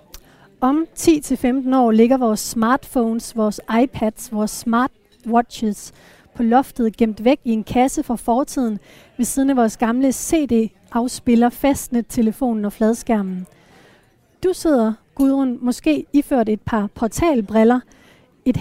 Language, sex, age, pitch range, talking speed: Danish, female, 30-49, 225-270 Hz, 125 wpm